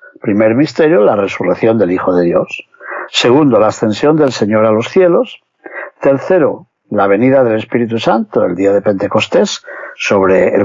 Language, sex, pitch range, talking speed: Spanish, male, 125-195 Hz, 160 wpm